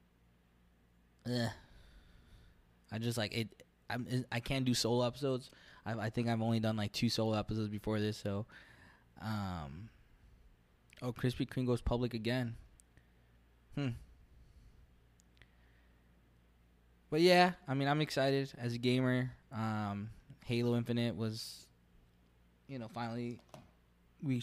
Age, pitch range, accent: 20-39, 75-120 Hz, American